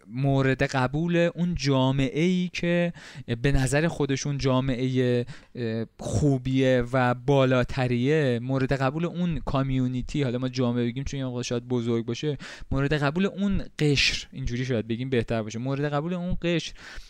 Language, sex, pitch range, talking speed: Persian, male, 125-155 Hz, 135 wpm